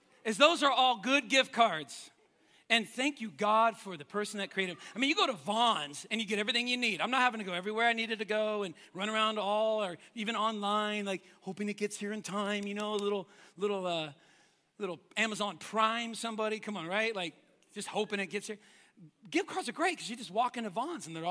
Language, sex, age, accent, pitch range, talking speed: English, male, 40-59, American, 195-290 Hz, 235 wpm